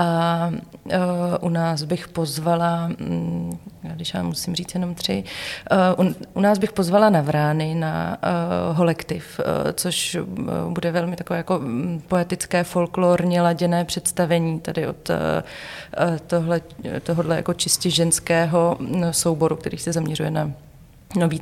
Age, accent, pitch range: 30-49, native, 155-170 Hz